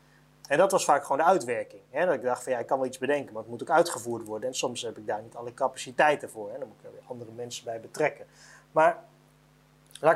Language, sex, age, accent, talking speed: Dutch, male, 30-49, Dutch, 265 wpm